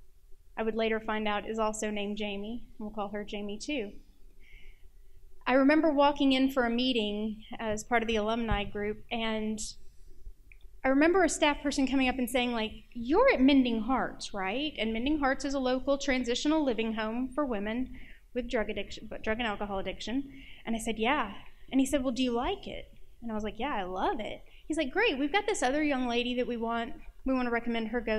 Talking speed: 215 wpm